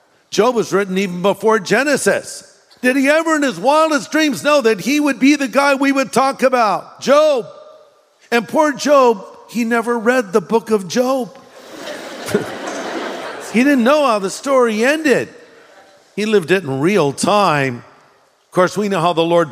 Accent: American